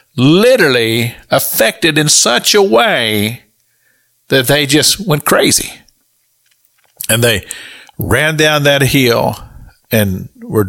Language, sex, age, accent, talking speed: English, male, 50-69, American, 105 wpm